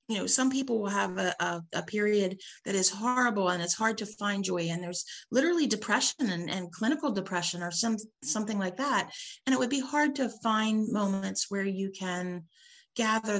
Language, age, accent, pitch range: English, 40-59, American, 180-235 Hz